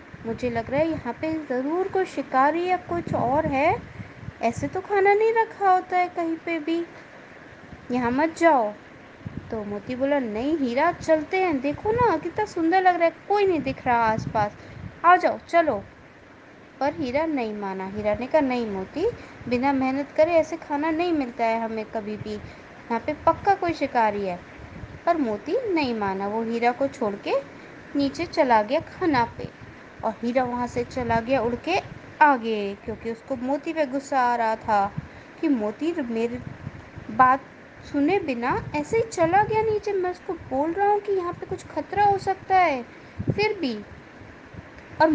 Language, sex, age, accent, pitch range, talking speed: Hindi, female, 20-39, native, 245-355 Hz, 175 wpm